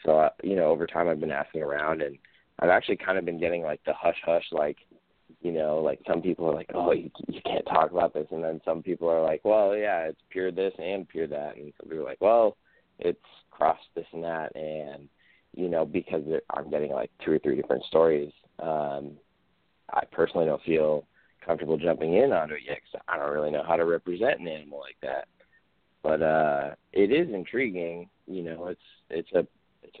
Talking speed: 210 wpm